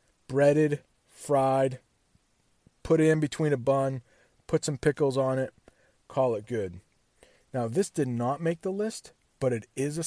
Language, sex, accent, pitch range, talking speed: English, male, American, 125-160 Hz, 160 wpm